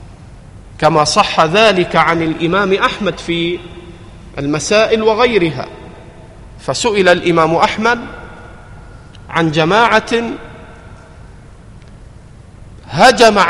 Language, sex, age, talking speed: Arabic, male, 50-69, 65 wpm